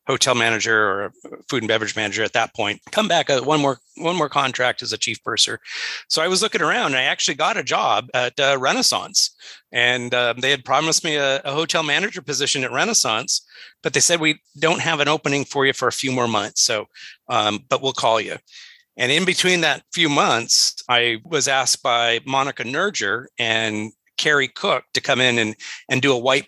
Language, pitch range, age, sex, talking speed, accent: English, 120-155 Hz, 40-59, male, 210 wpm, American